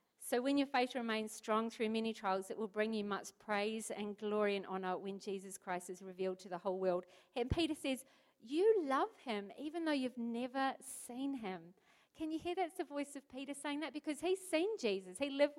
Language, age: English, 50-69